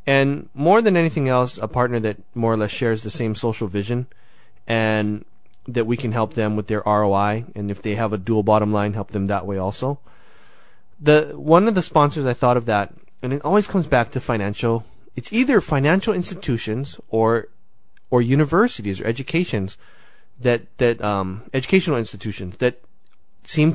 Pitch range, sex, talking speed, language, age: 110-135 Hz, male, 175 wpm, English, 30-49